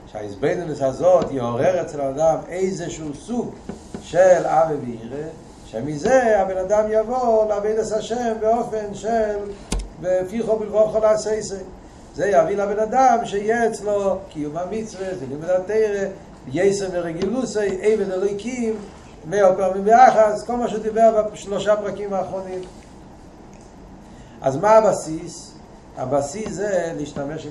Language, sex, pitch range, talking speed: Hebrew, male, 155-215 Hz, 85 wpm